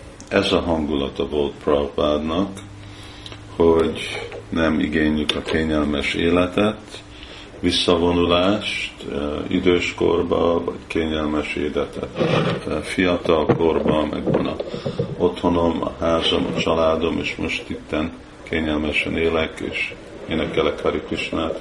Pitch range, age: 75-90 Hz, 50-69